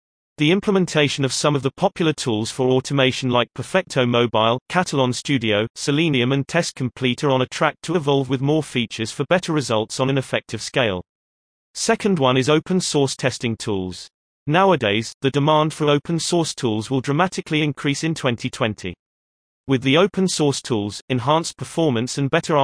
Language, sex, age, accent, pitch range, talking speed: English, male, 30-49, British, 120-155 Hz, 165 wpm